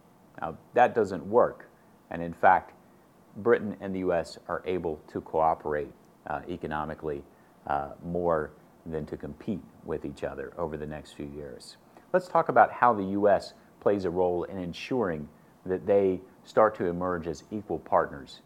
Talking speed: 160 wpm